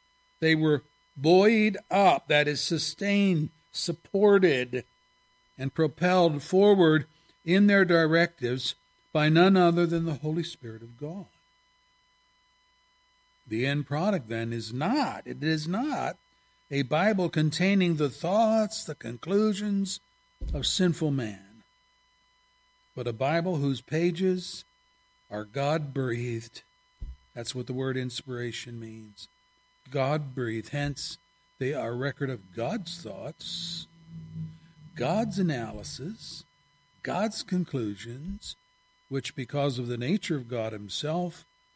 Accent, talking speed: American, 110 wpm